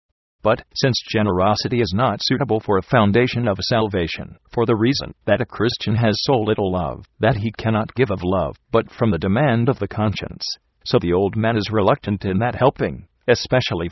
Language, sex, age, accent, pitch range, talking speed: English, male, 40-59, American, 95-120 Hz, 190 wpm